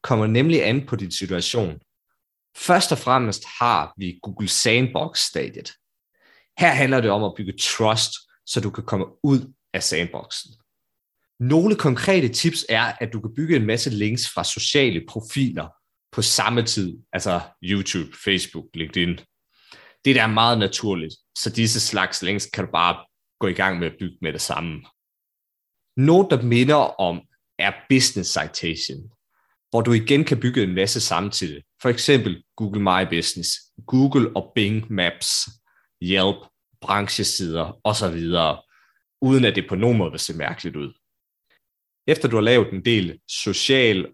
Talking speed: 150 wpm